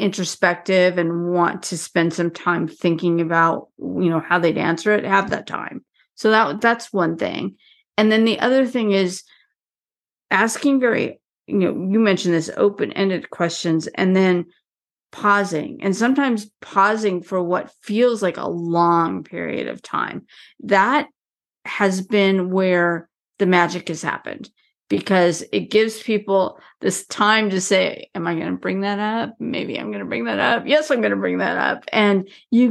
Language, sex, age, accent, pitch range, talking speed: English, female, 40-59, American, 175-225 Hz, 170 wpm